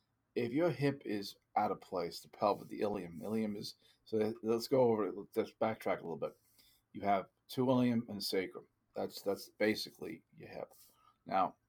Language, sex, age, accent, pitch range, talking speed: English, male, 40-59, American, 100-115 Hz, 180 wpm